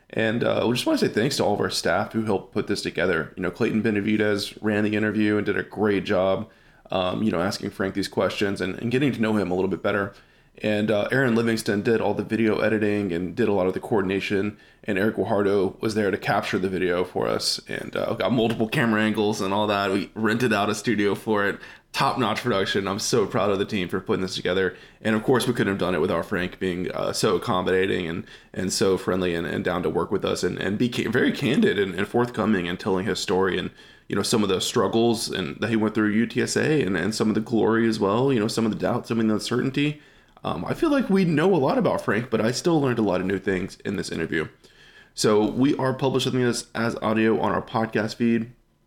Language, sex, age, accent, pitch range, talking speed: English, male, 20-39, American, 100-115 Hz, 250 wpm